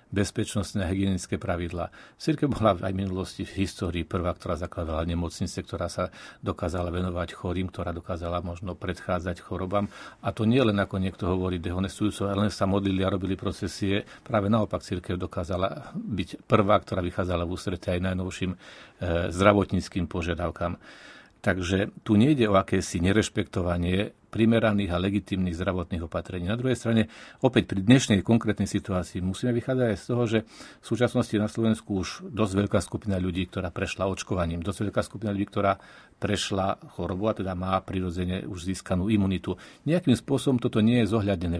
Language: Slovak